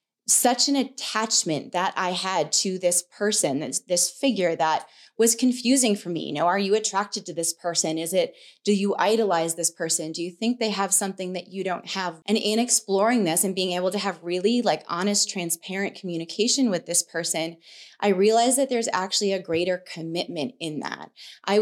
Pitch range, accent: 175-220 Hz, American